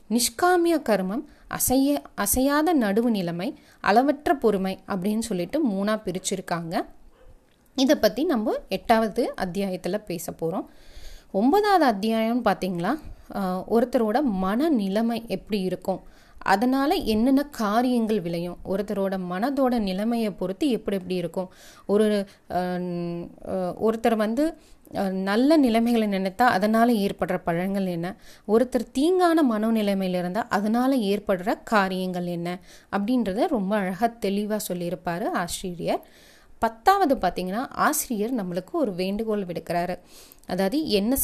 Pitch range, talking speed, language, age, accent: 185-245 Hz, 105 wpm, Tamil, 30-49, native